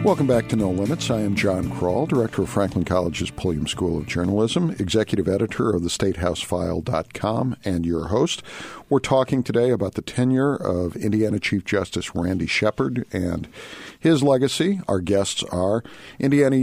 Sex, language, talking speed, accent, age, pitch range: male, English, 160 wpm, American, 50-69, 90-120 Hz